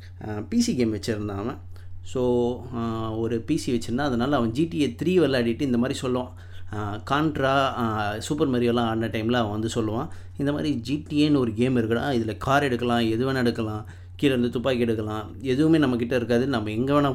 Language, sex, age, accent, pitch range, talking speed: Tamil, male, 20-39, native, 110-135 Hz, 160 wpm